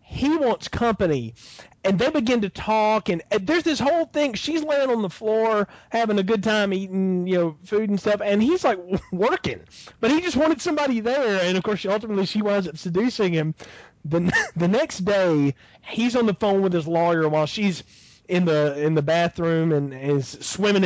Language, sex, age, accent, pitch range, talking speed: English, male, 30-49, American, 155-210 Hz, 200 wpm